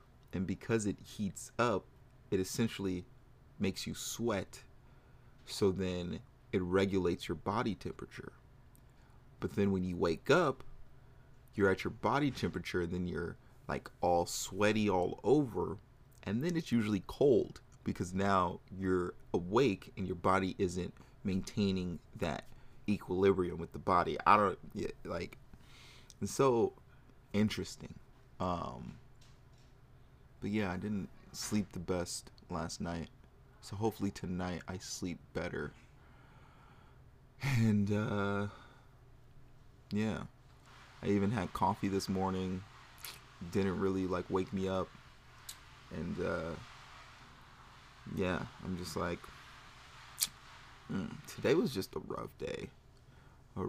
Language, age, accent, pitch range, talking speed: English, 30-49, American, 95-125 Hz, 115 wpm